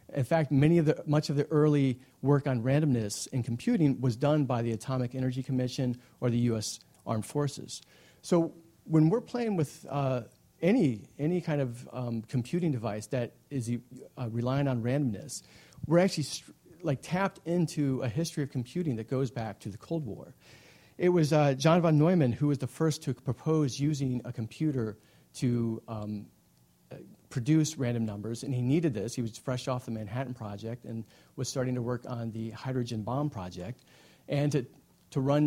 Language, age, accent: English, 40-59, American